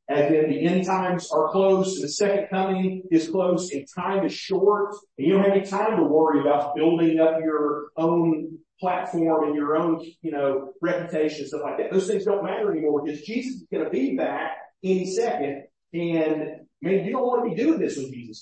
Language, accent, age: English, American, 40-59